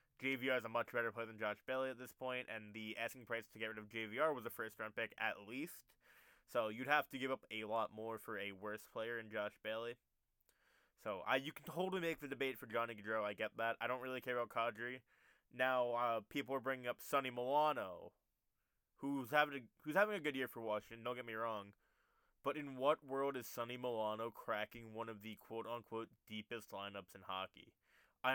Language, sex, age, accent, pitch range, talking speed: English, male, 20-39, American, 110-135 Hz, 215 wpm